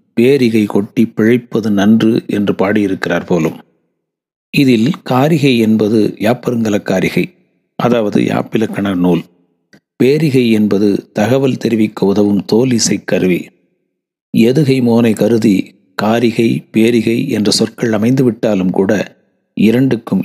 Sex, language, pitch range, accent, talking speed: male, Tamil, 105-120 Hz, native, 100 wpm